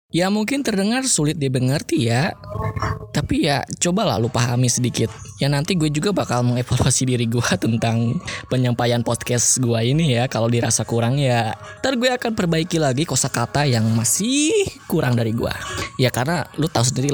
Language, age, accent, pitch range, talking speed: Indonesian, 10-29, native, 115-160 Hz, 160 wpm